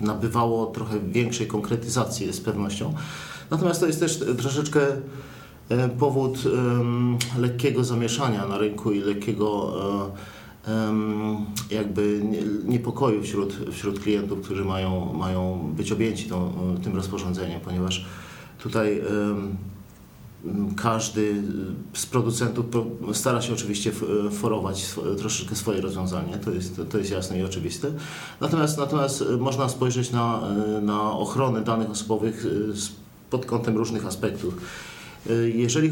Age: 40-59